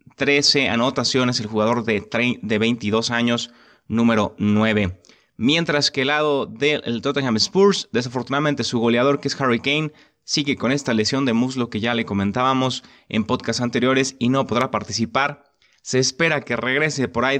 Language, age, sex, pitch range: Spanish, 30-49, male, 110-145 Hz